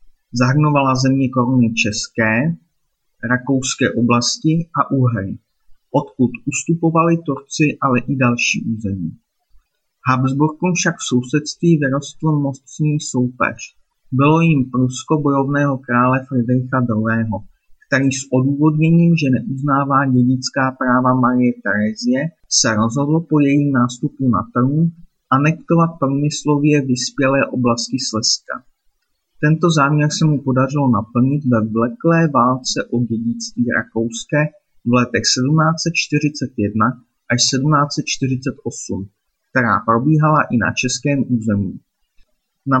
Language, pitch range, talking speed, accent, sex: Czech, 120-150 Hz, 105 wpm, native, male